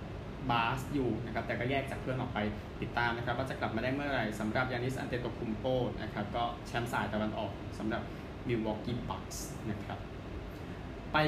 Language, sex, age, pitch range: Thai, male, 20-39, 110-140 Hz